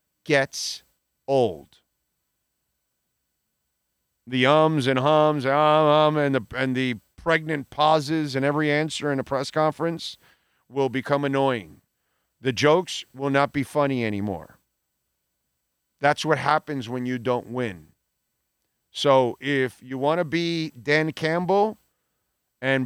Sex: male